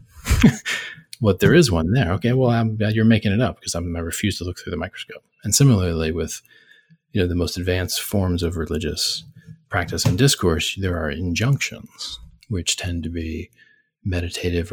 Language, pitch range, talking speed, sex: English, 85-105 Hz, 185 wpm, male